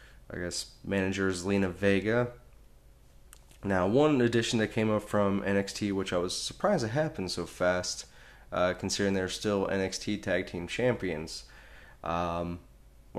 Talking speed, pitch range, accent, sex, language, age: 140 wpm, 85-100 Hz, American, male, English, 20-39